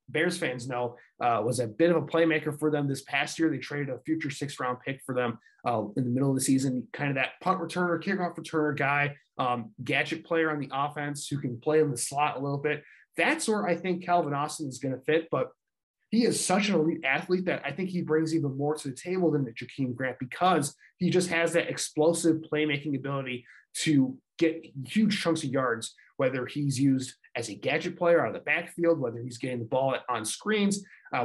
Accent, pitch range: American, 130-165 Hz